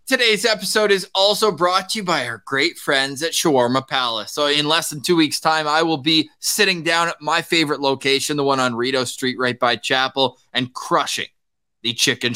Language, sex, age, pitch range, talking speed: English, male, 20-39, 130-170 Hz, 205 wpm